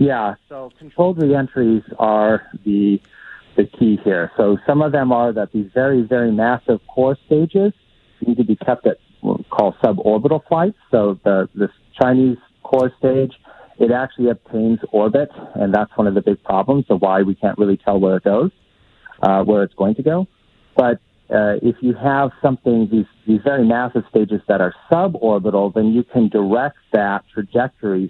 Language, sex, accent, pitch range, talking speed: English, male, American, 95-125 Hz, 175 wpm